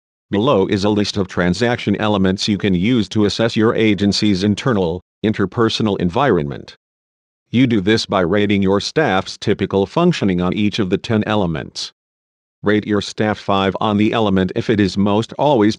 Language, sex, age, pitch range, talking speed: English, male, 50-69, 95-110 Hz, 165 wpm